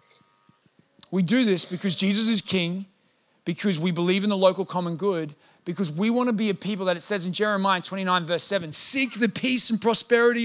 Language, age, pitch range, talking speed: English, 30-49, 160-200 Hz, 195 wpm